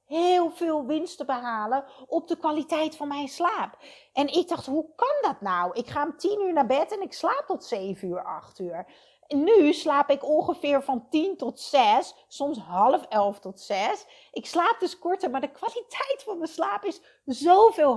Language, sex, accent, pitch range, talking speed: Dutch, female, Dutch, 225-320 Hz, 195 wpm